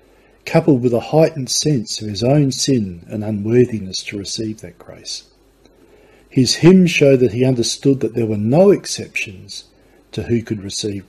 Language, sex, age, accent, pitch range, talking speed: English, male, 50-69, Australian, 95-130 Hz, 160 wpm